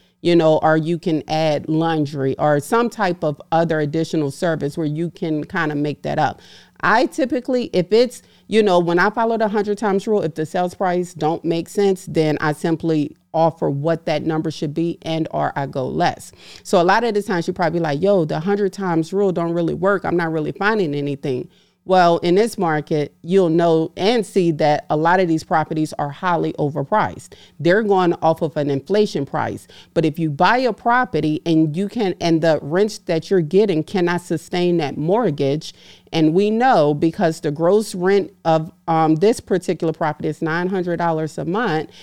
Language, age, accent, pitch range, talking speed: English, 40-59, American, 155-190 Hz, 195 wpm